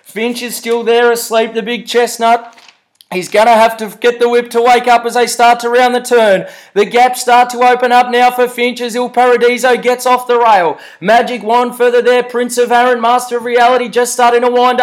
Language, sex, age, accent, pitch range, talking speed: English, male, 20-39, Australian, 240-280 Hz, 225 wpm